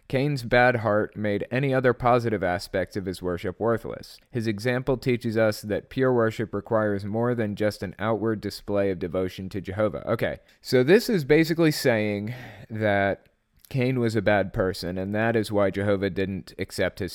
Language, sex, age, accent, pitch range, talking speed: English, male, 30-49, American, 100-130 Hz, 175 wpm